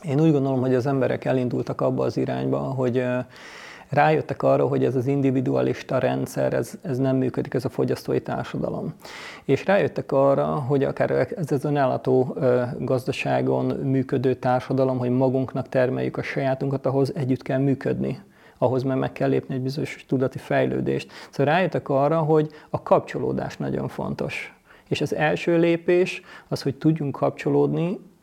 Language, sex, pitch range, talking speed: Hungarian, male, 130-150 Hz, 150 wpm